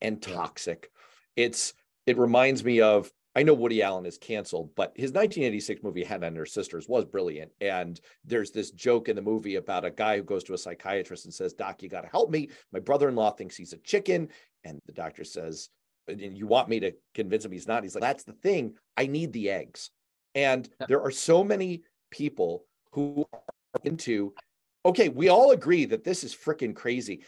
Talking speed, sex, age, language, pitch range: 200 wpm, male, 40-59, English, 110-180 Hz